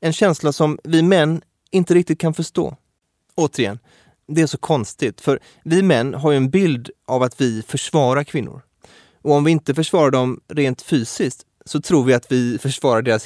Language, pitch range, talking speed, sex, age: English, 120-160 Hz, 185 wpm, male, 30-49